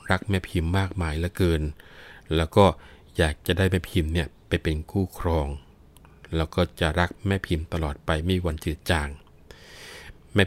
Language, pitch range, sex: Thai, 80-95 Hz, male